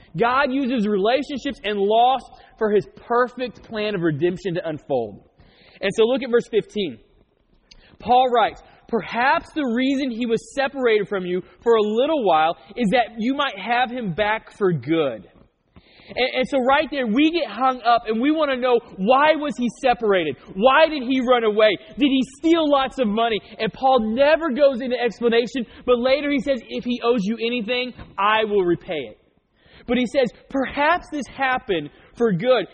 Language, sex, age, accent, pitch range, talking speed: English, male, 20-39, American, 215-270 Hz, 180 wpm